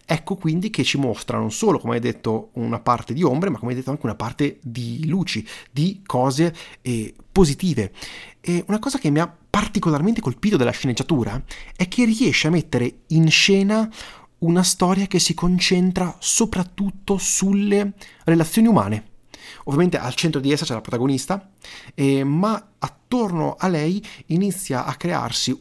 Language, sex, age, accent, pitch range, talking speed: Italian, male, 30-49, native, 130-190 Hz, 155 wpm